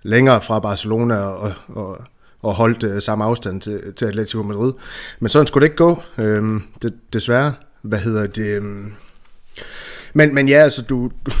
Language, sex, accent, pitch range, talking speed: Danish, male, native, 105-130 Hz, 165 wpm